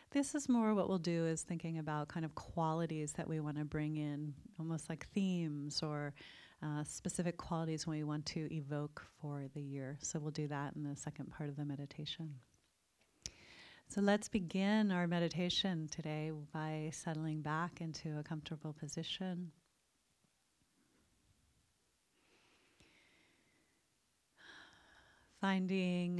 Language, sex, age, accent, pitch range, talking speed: English, female, 30-49, American, 150-165 Hz, 130 wpm